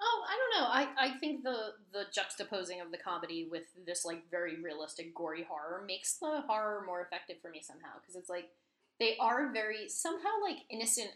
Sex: female